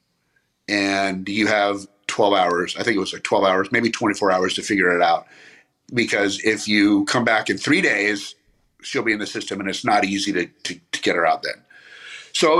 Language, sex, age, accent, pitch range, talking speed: English, male, 50-69, American, 100-120 Hz, 215 wpm